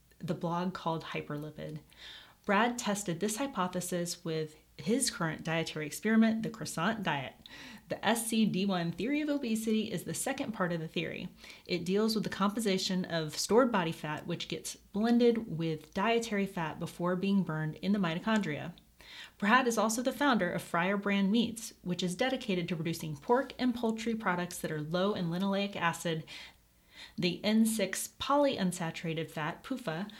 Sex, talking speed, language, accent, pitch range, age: female, 155 wpm, English, American, 170-230 Hz, 30-49